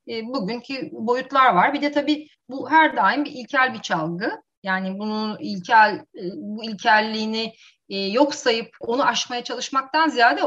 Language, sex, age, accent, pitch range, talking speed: Turkish, female, 30-49, native, 180-245 Hz, 140 wpm